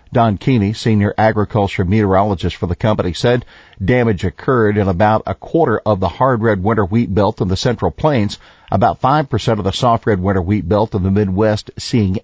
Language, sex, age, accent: English, male, 50-69, American